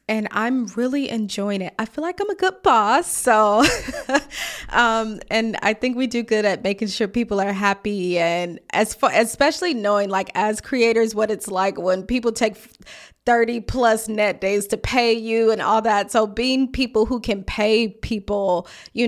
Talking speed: 180 wpm